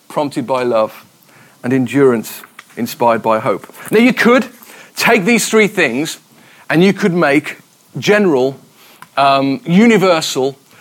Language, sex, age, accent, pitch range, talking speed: English, male, 40-59, British, 150-200 Hz, 120 wpm